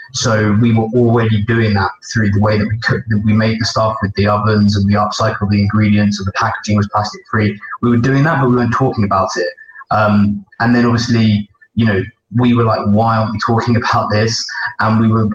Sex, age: male, 20-39